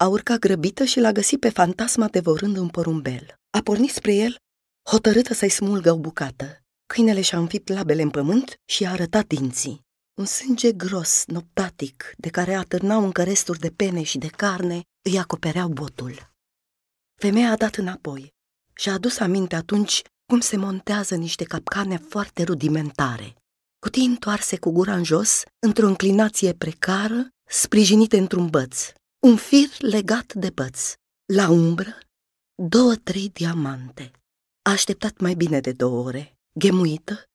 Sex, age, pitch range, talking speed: female, 30-49, 155-205 Hz, 150 wpm